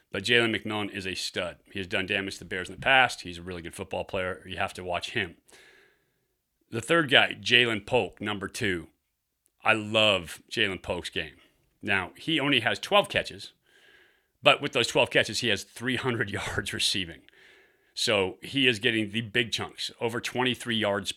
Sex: male